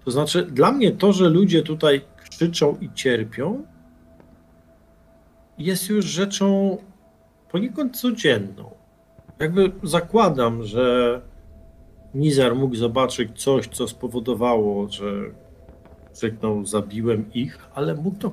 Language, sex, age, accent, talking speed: Polish, male, 50-69, native, 105 wpm